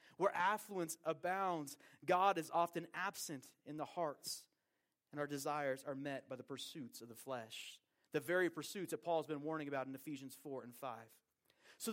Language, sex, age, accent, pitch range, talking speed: English, male, 30-49, American, 150-215 Hz, 180 wpm